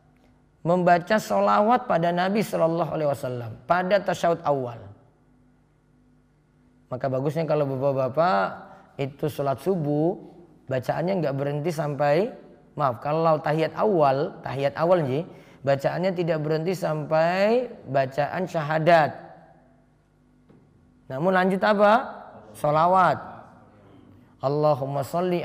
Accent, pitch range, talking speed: native, 140-185 Hz, 90 wpm